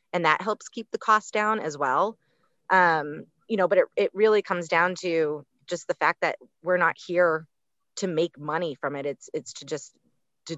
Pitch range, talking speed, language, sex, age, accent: 160-215 Hz, 205 wpm, English, female, 30-49, American